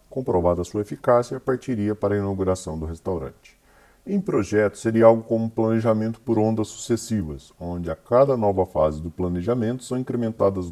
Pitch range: 90-125 Hz